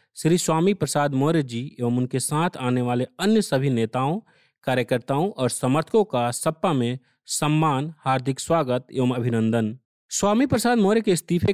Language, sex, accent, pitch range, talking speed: Hindi, male, native, 130-175 Hz, 150 wpm